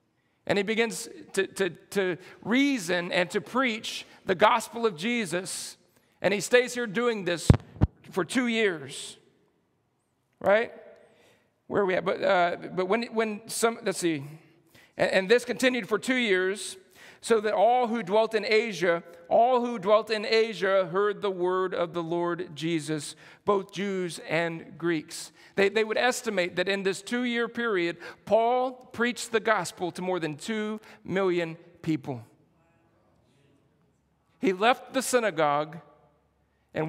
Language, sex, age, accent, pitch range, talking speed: English, male, 50-69, American, 170-225 Hz, 145 wpm